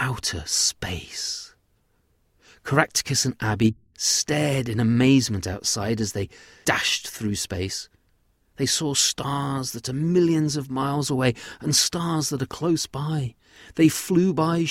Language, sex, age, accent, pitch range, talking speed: English, male, 30-49, British, 105-145 Hz, 130 wpm